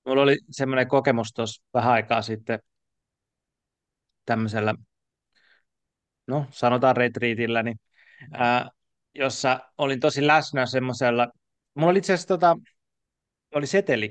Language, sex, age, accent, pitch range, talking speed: Finnish, male, 30-49, native, 120-150 Hz, 105 wpm